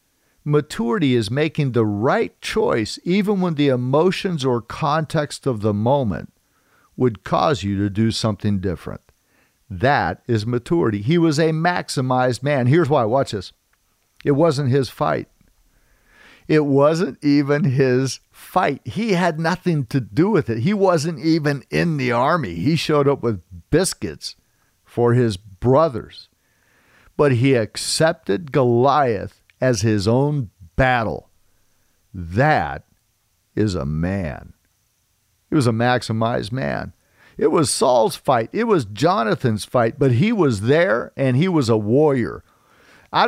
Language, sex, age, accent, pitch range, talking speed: English, male, 50-69, American, 110-155 Hz, 135 wpm